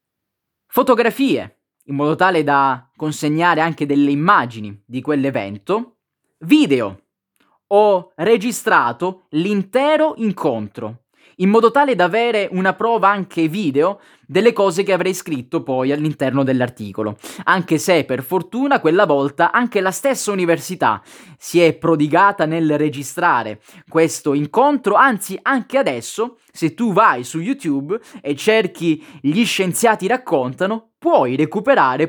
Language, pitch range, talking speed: Italian, 145-220 Hz, 120 wpm